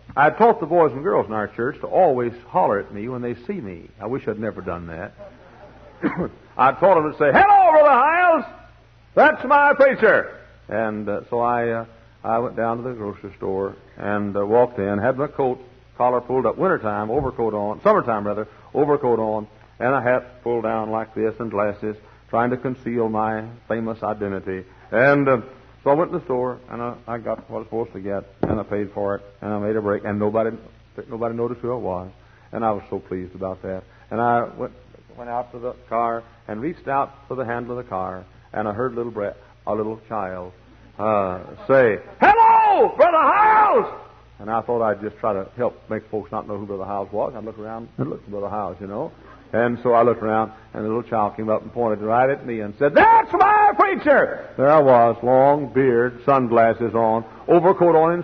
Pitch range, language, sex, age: 105-125 Hz, English, male, 60-79